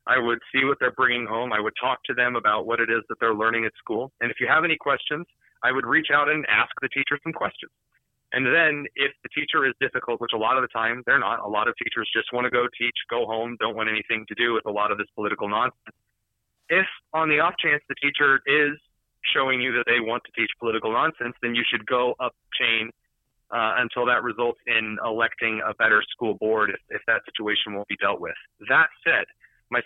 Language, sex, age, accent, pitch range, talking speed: English, male, 30-49, American, 115-145 Hz, 240 wpm